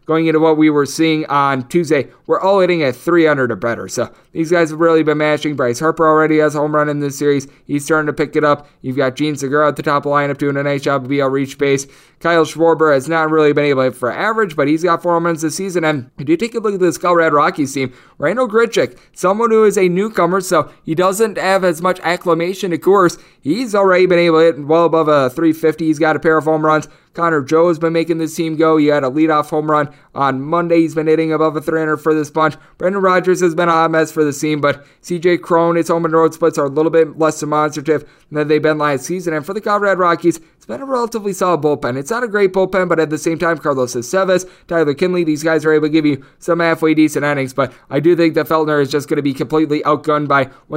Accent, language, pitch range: American, English, 145-170 Hz